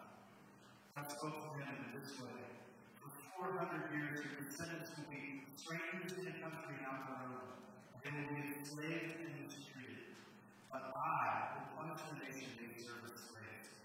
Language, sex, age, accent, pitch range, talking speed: English, female, 20-39, American, 125-155 Hz, 185 wpm